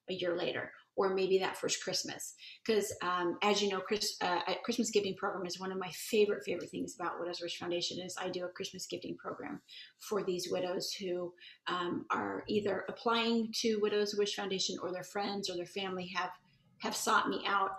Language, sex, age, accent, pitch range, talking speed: English, female, 30-49, American, 175-205 Hz, 200 wpm